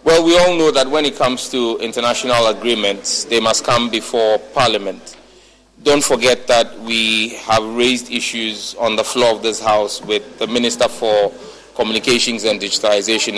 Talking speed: 160 wpm